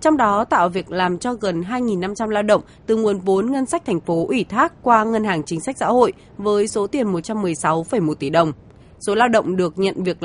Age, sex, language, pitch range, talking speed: 20-39, female, Vietnamese, 180-235 Hz, 220 wpm